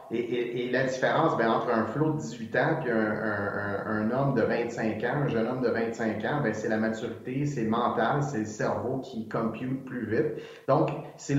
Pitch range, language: 115-155 Hz, French